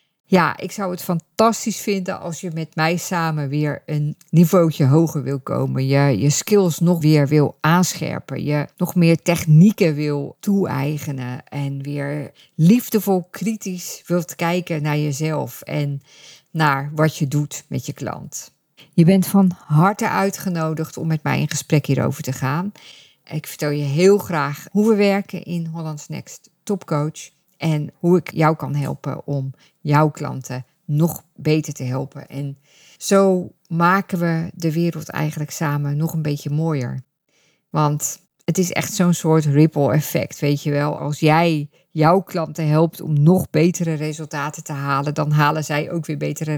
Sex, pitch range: female, 145-175 Hz